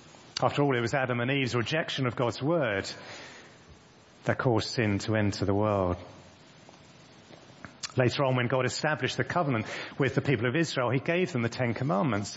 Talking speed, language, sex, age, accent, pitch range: 175 wpm, English, male, 40-59, British, 115-145 Hz